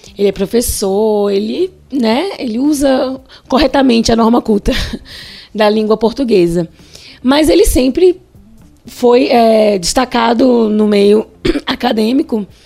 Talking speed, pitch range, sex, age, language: 110 wpm, 205-265 Hz, female, 20-39, Portuguese